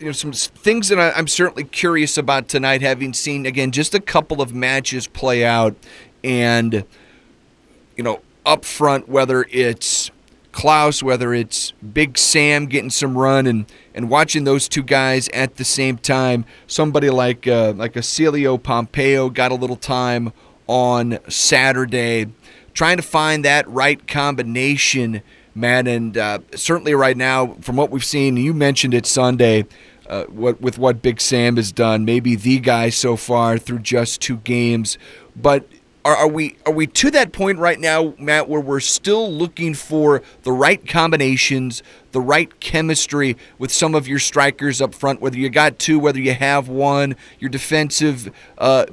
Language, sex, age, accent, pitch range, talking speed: English, male, 30-49, American, 125-150 Hz, 165 wpm